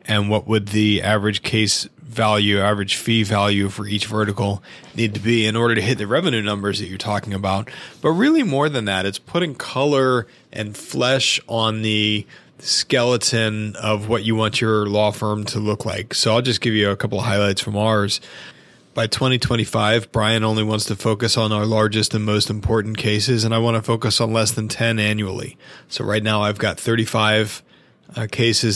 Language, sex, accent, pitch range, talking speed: English, male, American, 105-115 Hz, 195 wpm